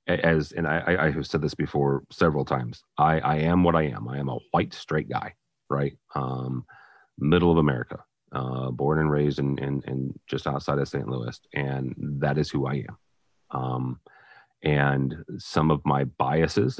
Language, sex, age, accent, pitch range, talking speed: English, male, 30-49, American, 70-80 Hz, 185 wpm